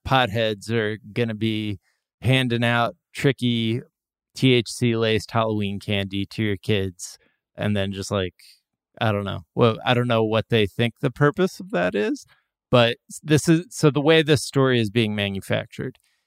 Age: 20-39